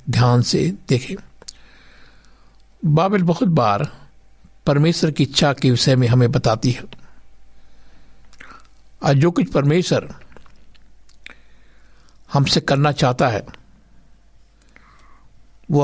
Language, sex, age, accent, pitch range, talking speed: Hindi, male, 60-79, native, 130-160 Hz, 90 wpm